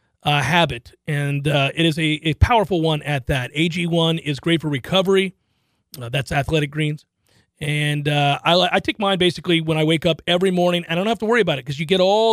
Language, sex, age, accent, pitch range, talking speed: English, male, 40-59, American, 155-200 Hz, 220 wpm